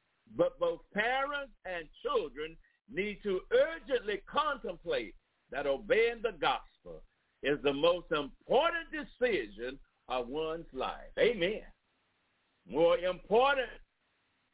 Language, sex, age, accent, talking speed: English, male, 60-79, American, 100 wpm